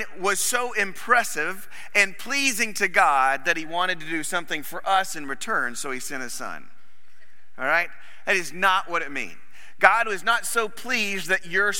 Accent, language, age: American, English, 40-59